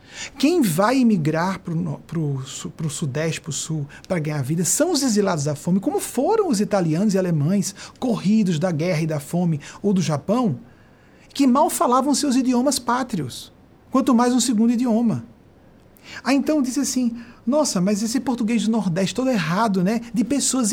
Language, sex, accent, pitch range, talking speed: Portuguese, male, Brazilian, 165-240 Hz, 170 wpm